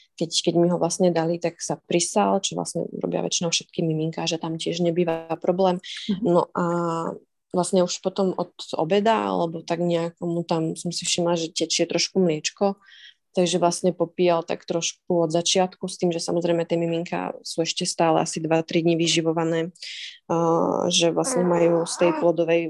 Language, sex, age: Slovak, female, 20-39